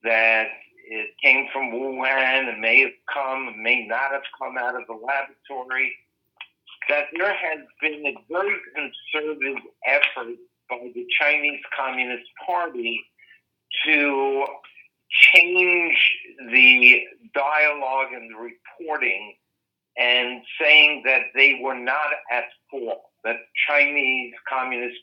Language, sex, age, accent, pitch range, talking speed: English, male, 50-69, American, 125-150 Hz, 115 wpm